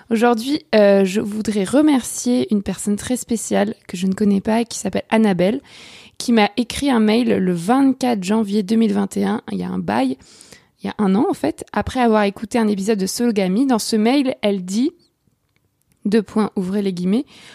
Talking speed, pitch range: 190 wpm, 195-235 Hz